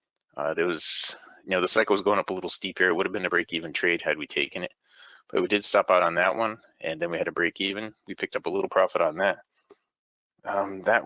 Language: English